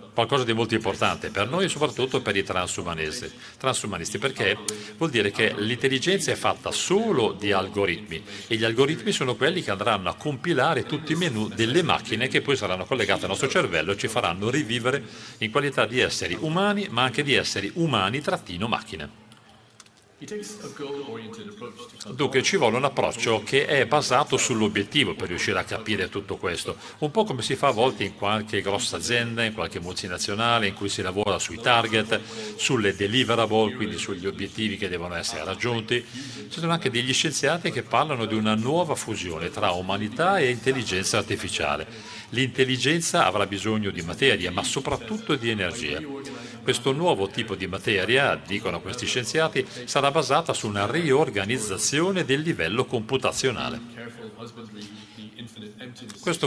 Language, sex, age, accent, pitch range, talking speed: Italian, male, 40-59, native, 105-135 Hz, 155 wpm